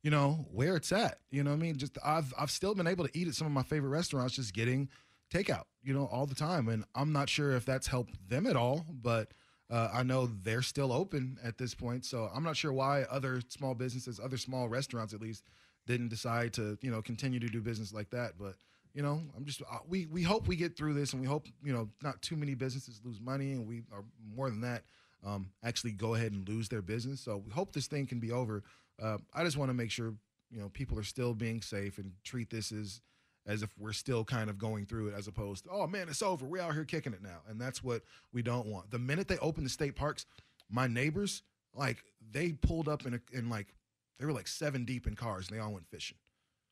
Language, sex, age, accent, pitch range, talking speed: English, male, 20-39, American, 115-140 Hz, 250 wpm